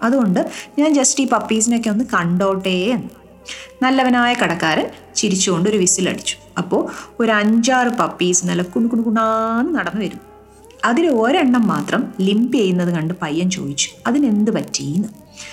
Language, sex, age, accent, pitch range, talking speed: Malayalam, female, 30-49, native, 180-245 Hz, 120 wpm